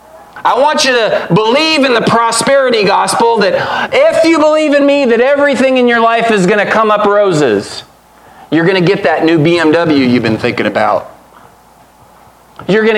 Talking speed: 180 wpm